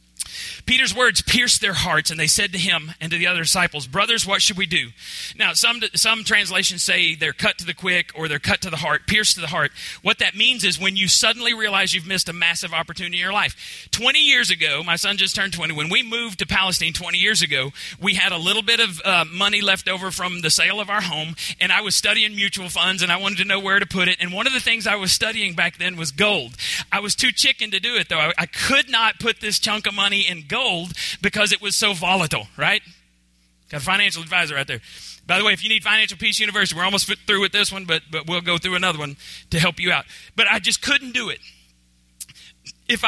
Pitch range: 155-205 Hz